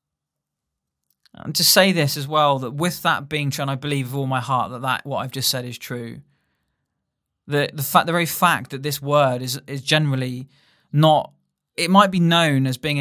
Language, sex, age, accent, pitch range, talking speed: English, male, 20-39, British, 130-150 Hz, 210 wpm